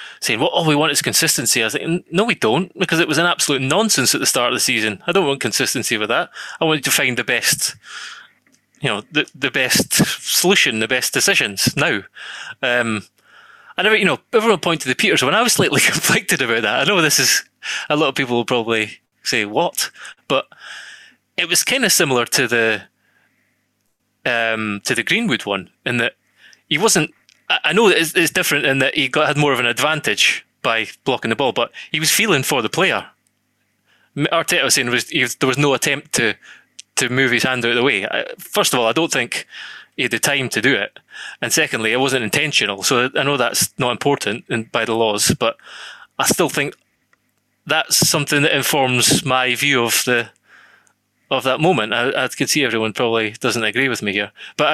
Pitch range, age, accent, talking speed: 120-160 Hz, 20-39, British, 210 wpm